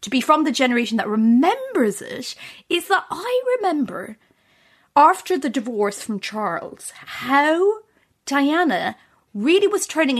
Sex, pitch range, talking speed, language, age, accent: female, 225-290 Hz, 130 wpm, English, 30-49, British